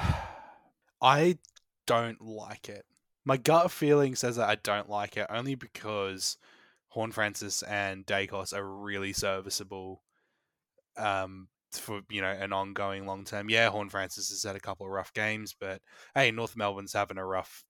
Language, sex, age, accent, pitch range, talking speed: English, male, 20-39, Australian, 100-110 Hz, 160 wpm